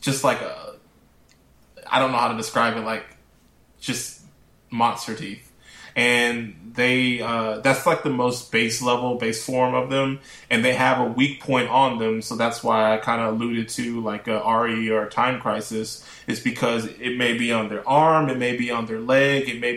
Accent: American